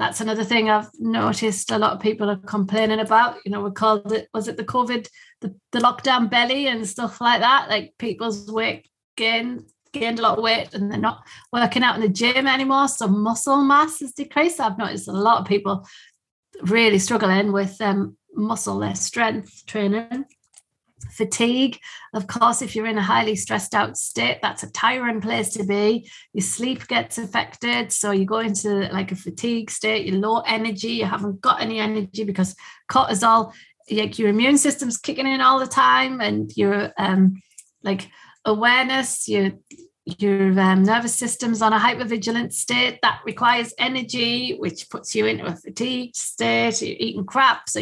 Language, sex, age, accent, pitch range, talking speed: English, female, 30-49, British, 205-245 Hz, 180 wpm